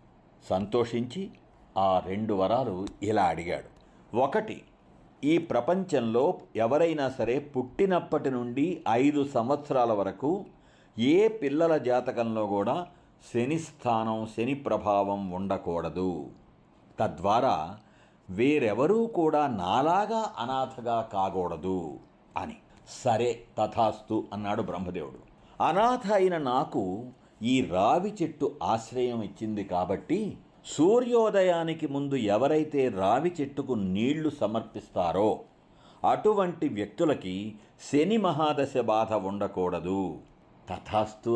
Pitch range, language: 100-150 Hz, Telugu